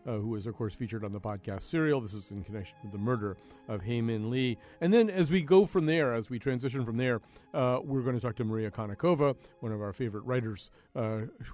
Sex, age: male, 50-69